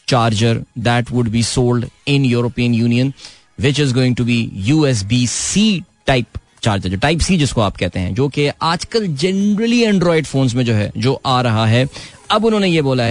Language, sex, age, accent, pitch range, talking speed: Hindi, male, 20-39, native, 125-165 Hz, 195 wpm